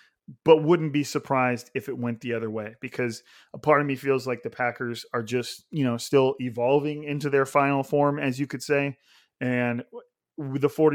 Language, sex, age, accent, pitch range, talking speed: English, male, 30-49, American, 125-150 Hz, 190 wpm